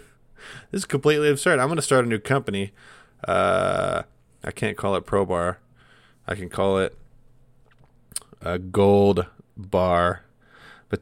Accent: American